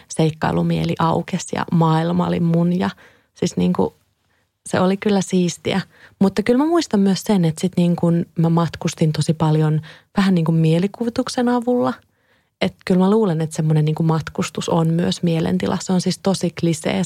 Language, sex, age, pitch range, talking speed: Finnish, female, 30-49, 170-195 Hz, 165 wpm